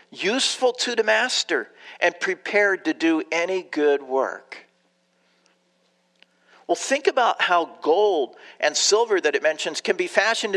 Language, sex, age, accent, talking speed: English, male, 50-69, American, 135 wpm